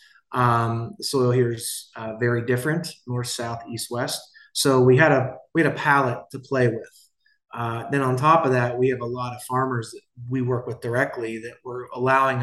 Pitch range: 115-135 Hz